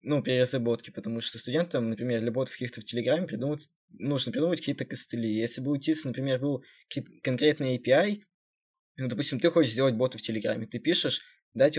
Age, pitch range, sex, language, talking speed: 20-39, 115-145 Hz, male, Russian, 175 wpm